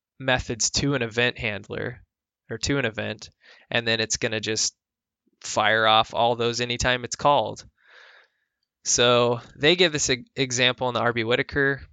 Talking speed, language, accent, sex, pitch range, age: 155 wpm, English, American, male, 110-130 Hz, 20-39